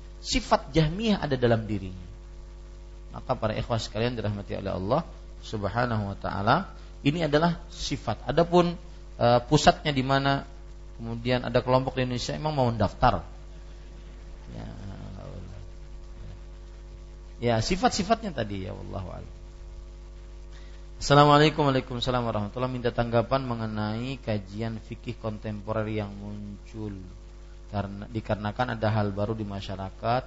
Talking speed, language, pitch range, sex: 105 wpm, Malay, 100-130 Hz, male